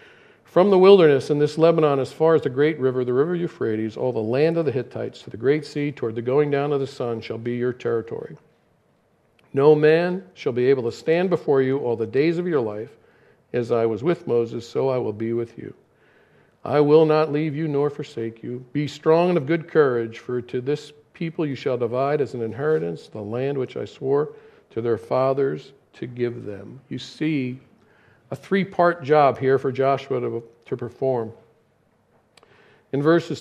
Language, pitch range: English, 125-155 Hz